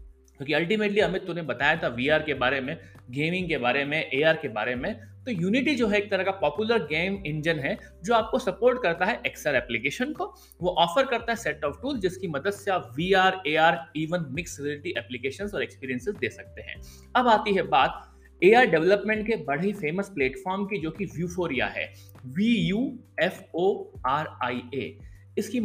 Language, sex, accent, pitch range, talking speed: Hindi, male, native, 140-210 Hz, 180 wpm